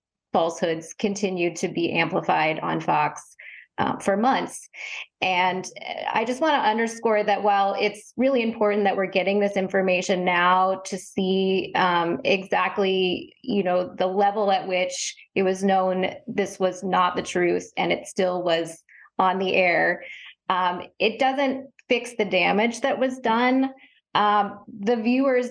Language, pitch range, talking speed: English, 190-230 Hz, 150 wpm